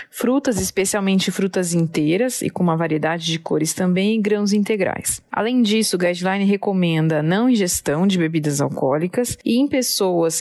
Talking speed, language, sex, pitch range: 155 wpm, Portuguese, female, 175-220 Hz